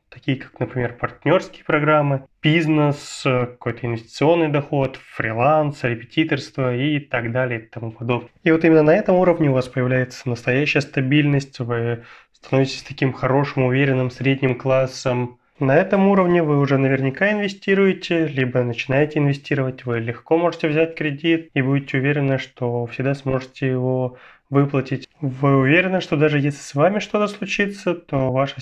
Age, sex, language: 20-39, male, Russian